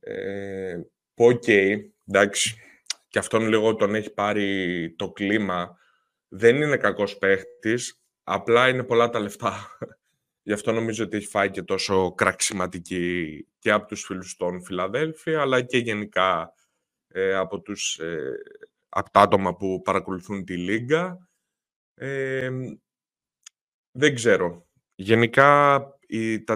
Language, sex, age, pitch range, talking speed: Greek, male, 20-39, 95-120 Hz, 110 wpm